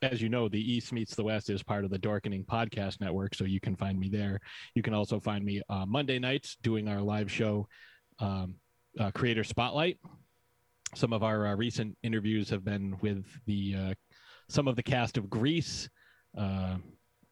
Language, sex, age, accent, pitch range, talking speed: English, male, 30-49, American, 100-120 Hz, 195 wpm